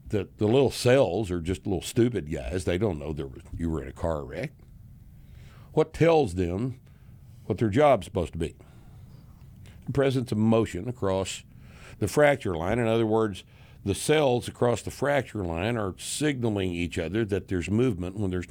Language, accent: English, American